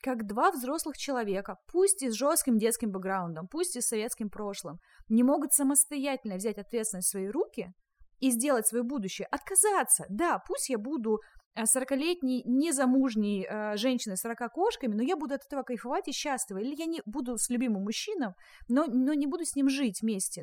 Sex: female